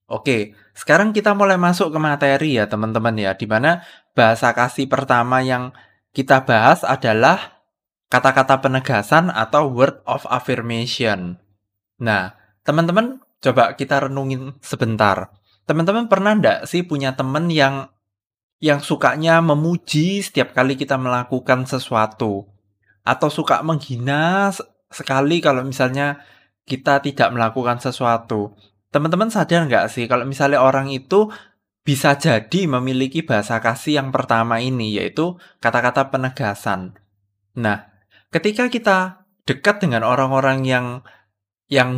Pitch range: 110-155 Hz